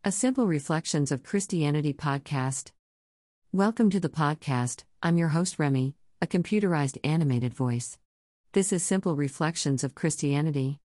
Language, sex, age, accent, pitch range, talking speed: English, female, 50-69, American, 130-165 Hz, 130 wpm